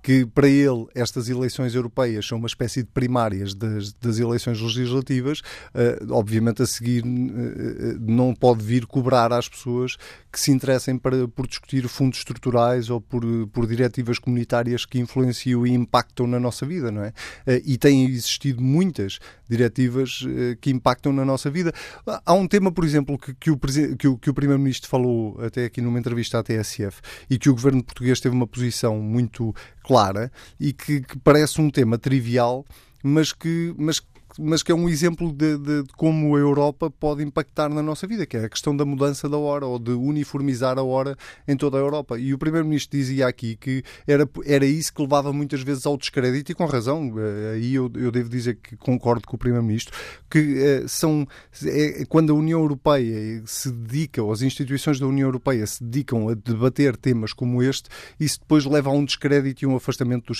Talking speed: 185 wpm